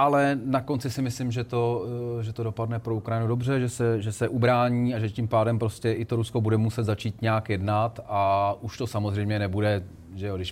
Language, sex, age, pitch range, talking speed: Czech, male, 30-49, 100-115 Hz, 205 wpm